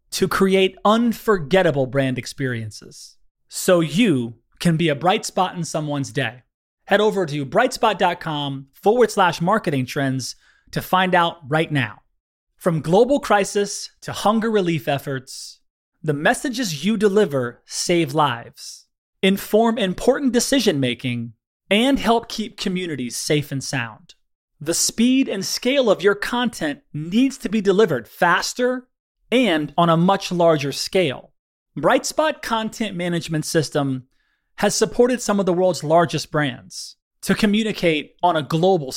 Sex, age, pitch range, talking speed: male, 30-49, 145-210 Hz, 135 wpm